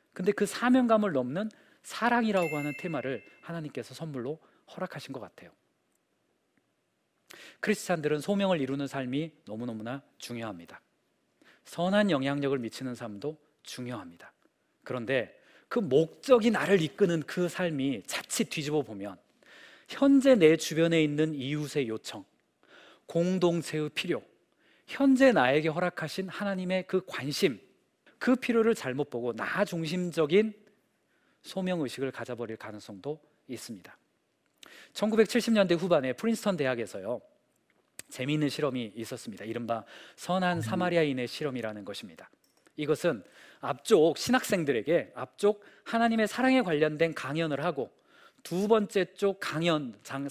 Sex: male